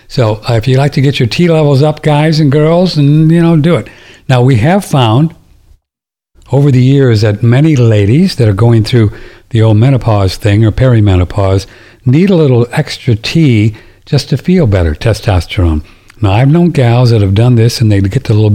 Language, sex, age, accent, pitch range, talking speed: English, male, 60-79, American, 105-135 Hz, 195 wpm